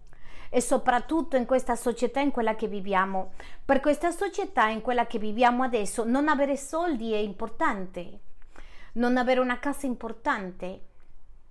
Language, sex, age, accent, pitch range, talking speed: Spanish, female, 40-59, American, 225-280 Hz, 140 wpm